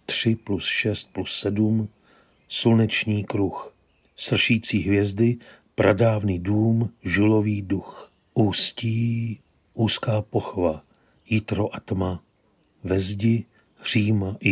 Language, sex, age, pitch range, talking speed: Czech, male, 40-59, 100-115 Hz, 85 wpm